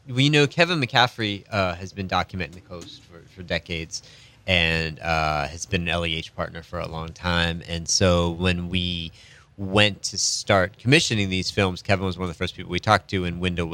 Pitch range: 90-120 Hz